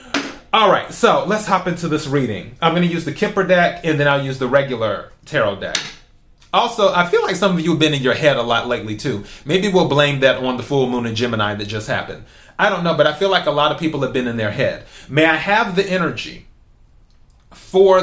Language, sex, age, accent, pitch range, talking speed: English, male, 30-49, American, 125-175 Hz, 245 wpm